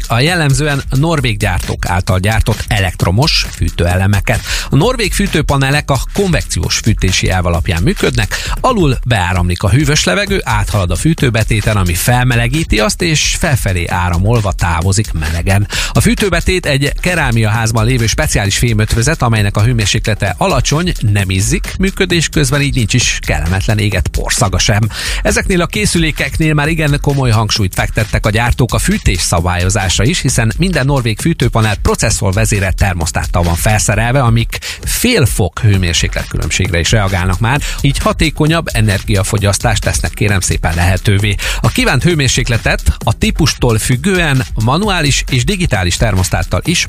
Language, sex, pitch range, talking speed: Hungarian, male, 95-145 Hz, 130 wpm